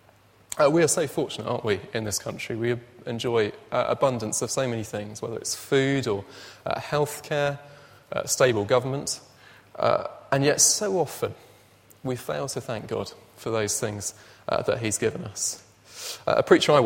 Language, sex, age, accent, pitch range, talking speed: English, male, 20-39, British, 105-135 Hz, 175 wpm